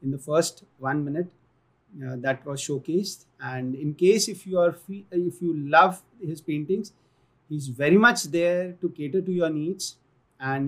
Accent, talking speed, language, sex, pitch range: Indian, 175 wpm, English, male, 135-180 Hz